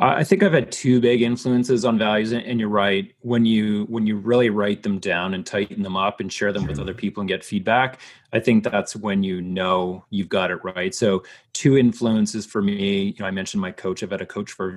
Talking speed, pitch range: 240 wpm, 100-120 Hz